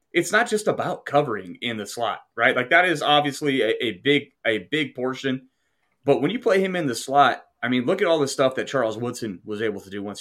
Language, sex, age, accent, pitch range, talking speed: English, male, 30-49, American, 110-140 Hz, 245 wpm